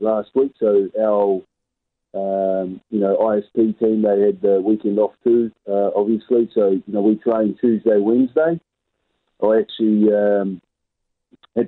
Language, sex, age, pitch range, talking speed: English, male, 30-49, 95-110 Hz, 150 wpm